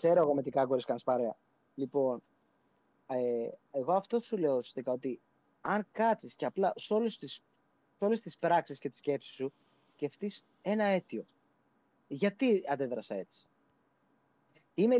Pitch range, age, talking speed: 140-220 Hz, 20-39, 130 wpm